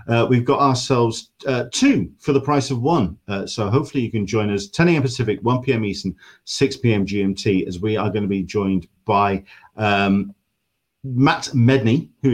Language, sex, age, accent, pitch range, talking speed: English, male, 40-59, British, 90-120 Hz, 190 wpm